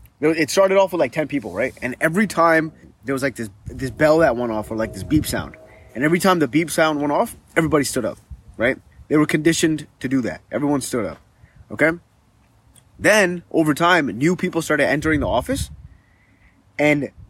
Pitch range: 120-165 Hz